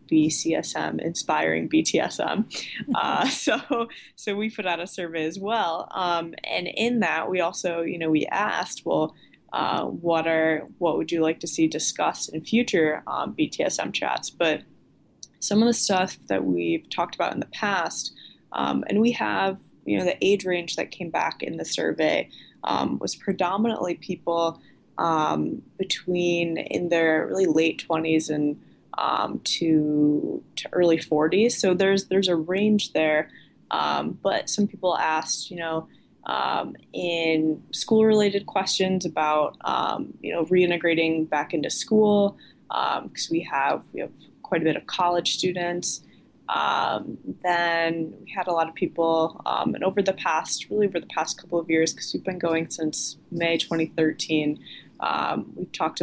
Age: 20-39